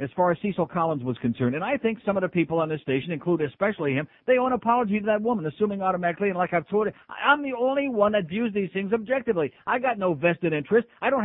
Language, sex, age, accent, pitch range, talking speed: English, male, 50-69, American, 145-205 Hz, 265 wpm